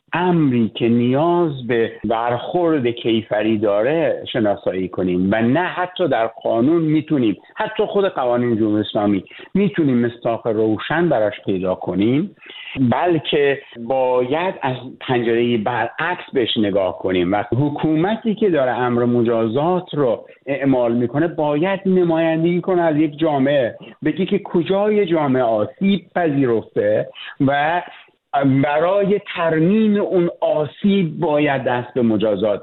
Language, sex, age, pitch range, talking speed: Persian, male, 50-69, 120-175 Hz, 120 wpm